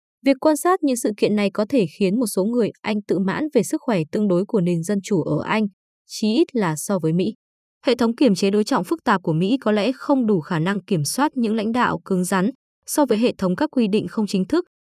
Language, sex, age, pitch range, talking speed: Vietnamese, female, 20-39, 190-250 Hz, 265 wpm